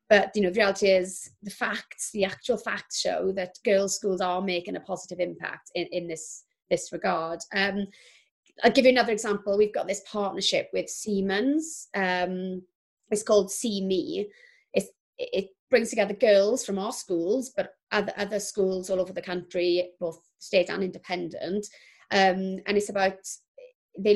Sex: female